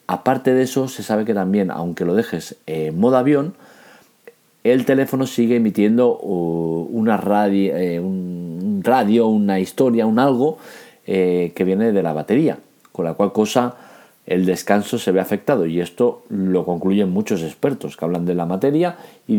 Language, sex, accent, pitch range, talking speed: Spanish, male, Spanish, 90-120 Hz, 160 wpm